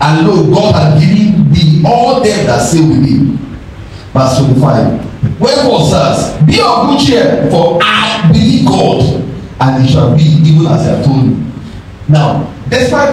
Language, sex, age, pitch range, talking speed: English, male, 50-69, 105-160 Hz, 160 wpm